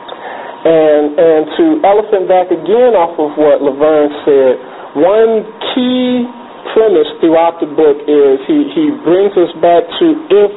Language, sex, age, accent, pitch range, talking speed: English, male, 40-59, American, 140-220 Hz, 140 wpm